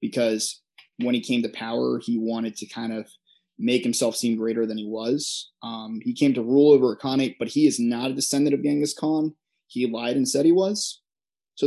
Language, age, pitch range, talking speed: English, 20-39, 120-145 Hz, 215 wpm